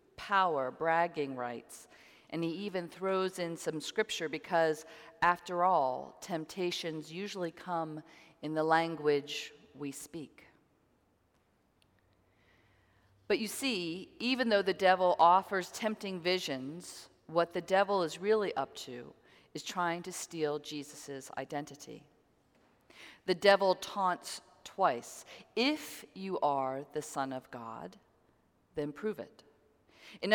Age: 40-59